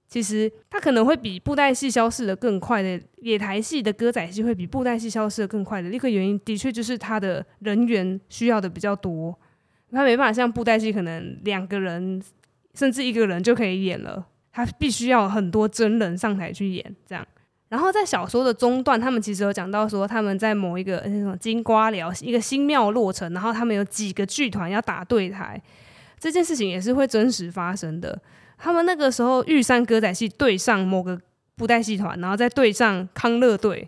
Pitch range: 185-235 Hz